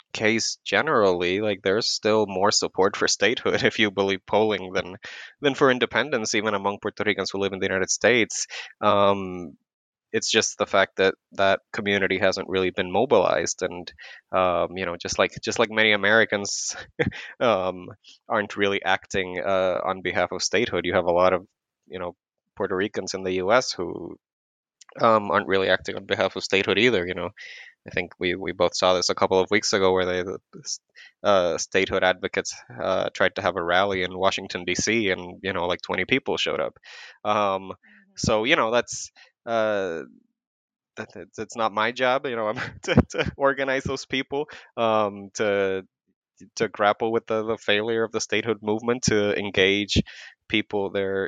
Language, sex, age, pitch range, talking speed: Spanish, male, 20-39, 95-110 Hz, 175 wpm